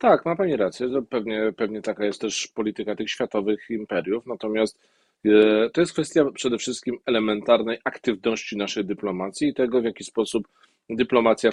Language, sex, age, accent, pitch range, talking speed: Polish, male, 40-59, native, 105-130 Hz, 150 wpm